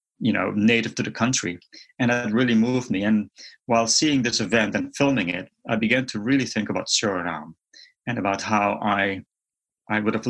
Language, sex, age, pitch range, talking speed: English, male, 30-49, 100-115 Hz, 190 wpm